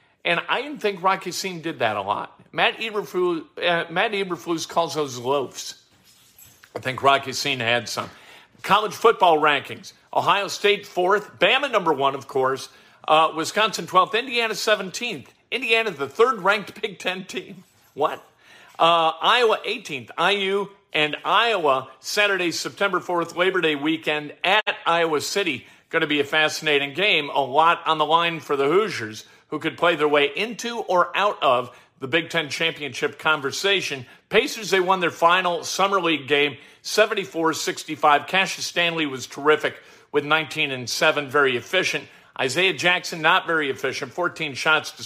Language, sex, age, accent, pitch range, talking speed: English, male, 50-69, American, 145-195 Hz, 150 wpm